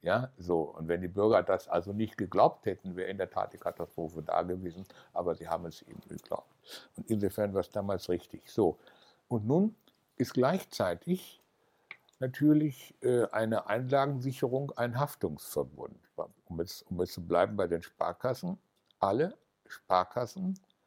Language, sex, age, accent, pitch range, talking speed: German, male, 60-79, German, 95-130 Hz, 145 wpm